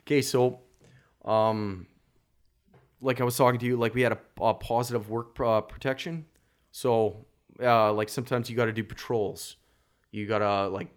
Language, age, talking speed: English, 20-39, 170 wpm